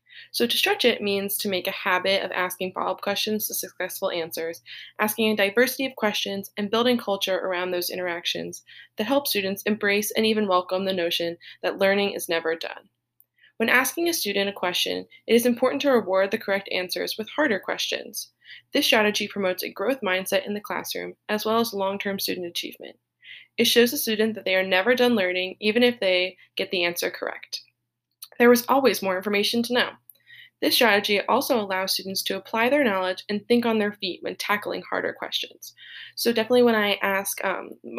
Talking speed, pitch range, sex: 190 wpm, 185-220 Hz, female